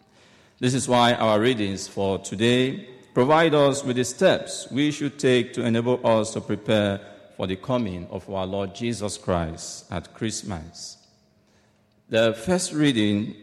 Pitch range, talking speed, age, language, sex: 105-130 Hz, 145 wpm, 50-69, English, male